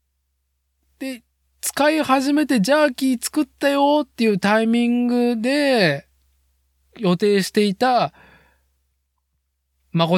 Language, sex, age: Japanese, male, 20-39